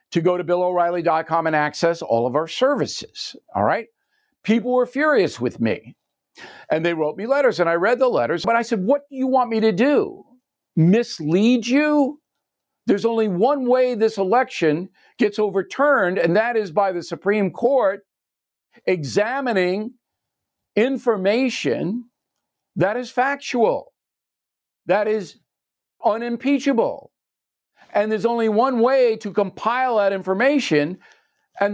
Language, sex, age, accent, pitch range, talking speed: English, male, 50-69, American, 185-255 Hz, 135 wpm